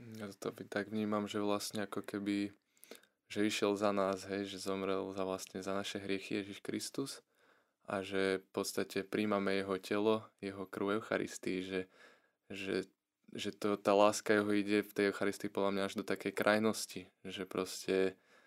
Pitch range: 95-100 Hz